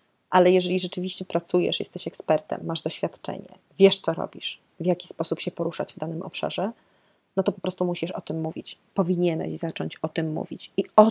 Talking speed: 185 wpm